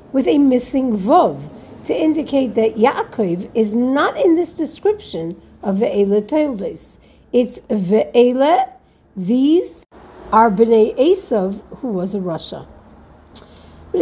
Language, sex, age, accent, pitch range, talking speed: English, female, 50-69, American, 200-300 Hz, 115 wpm